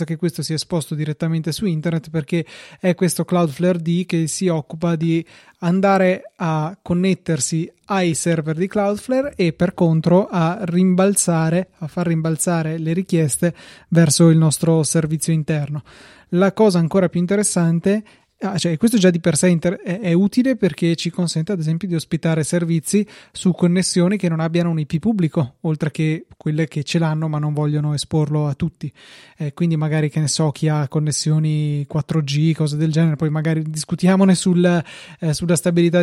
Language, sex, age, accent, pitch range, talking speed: Italian, male, 20-39, native, 160-185 Hz, 170 wpm